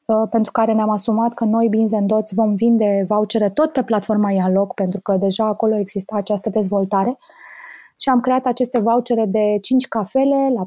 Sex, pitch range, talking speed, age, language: female, 205-245 Hz, 175 wpm, 20-39, Romanian